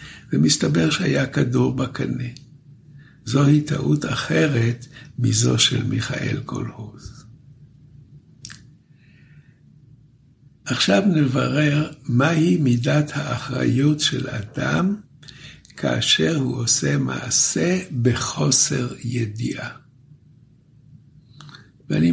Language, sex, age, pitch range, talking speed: Hebrew, male, 60-79, 125-145 Hz, 70 wpm